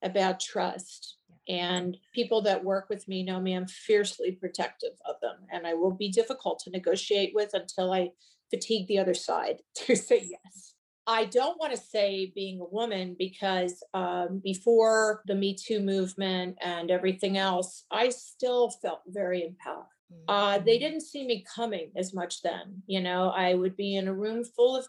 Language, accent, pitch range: English, American, 185-230 Hz